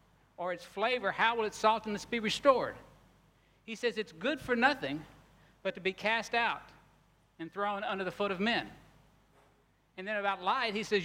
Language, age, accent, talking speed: English, 60-79, American, 180 wpm